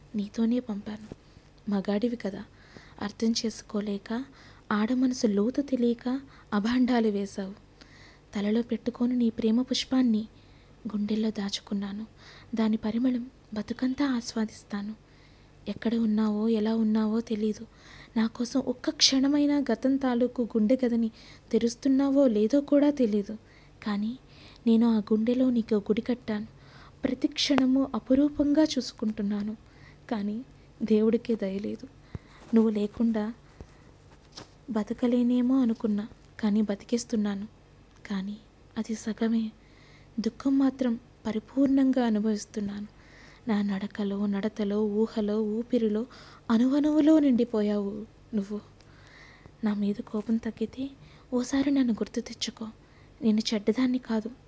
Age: 20-39